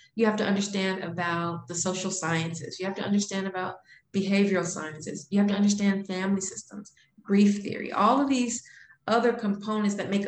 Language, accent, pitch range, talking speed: English, American, 175-205 Hz, 175 wpm